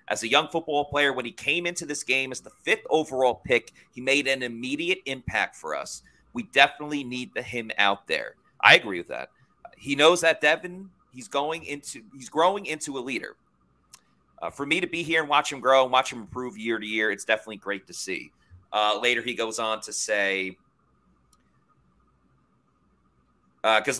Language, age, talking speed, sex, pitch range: English, 30-49, 190 wpm, male, 105-140 Hz